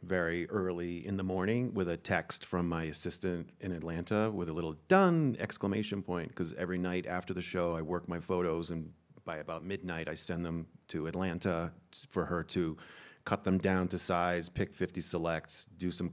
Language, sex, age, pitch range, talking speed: English, male, 30-49, 85-100 Hz, 190 wpm